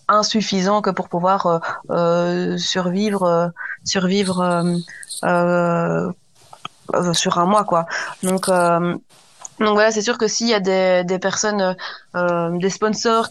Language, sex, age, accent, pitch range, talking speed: French, female, 20-39, French, 180-210 Hz, 140 wpm